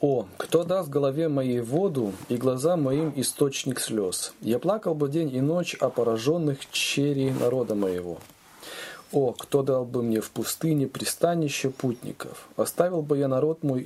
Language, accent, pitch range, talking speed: Russian, native, 120-155 Hz, 155 wpm